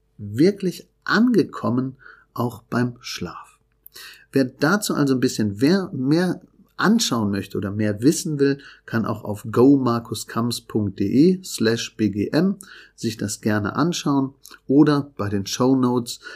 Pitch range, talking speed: 105-135 Hz, 115 wpm